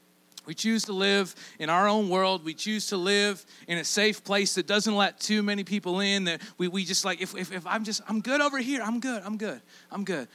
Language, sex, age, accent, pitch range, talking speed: English, male, 40-59, American, 155-210 Hz, 245 wpm